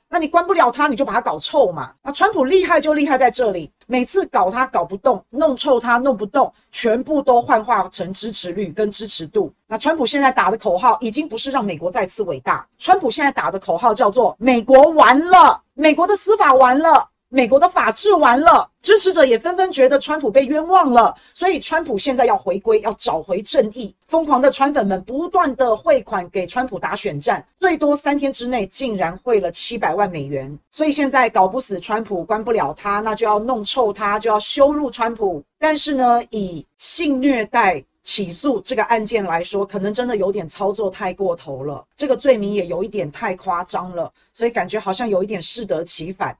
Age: 40-59